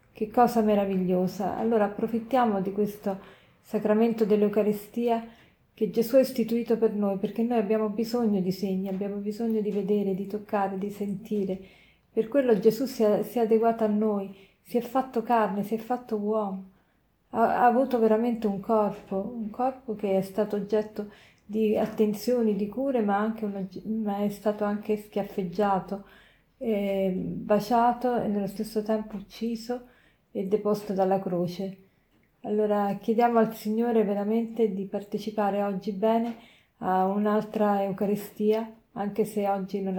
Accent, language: native, Italian